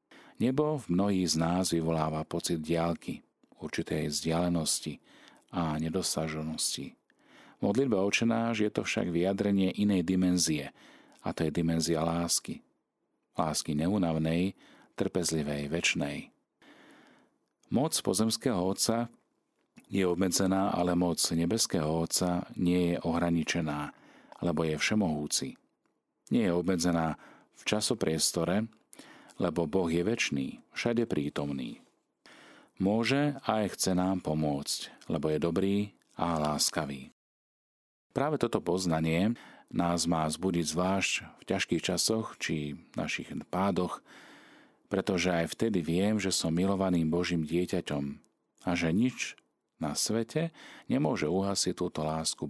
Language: Slovak